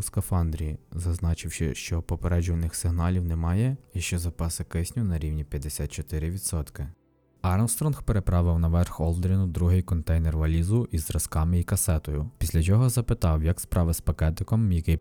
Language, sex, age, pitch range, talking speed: Ukrainian, male, 20-39, 80-100 Hz, 130 wpm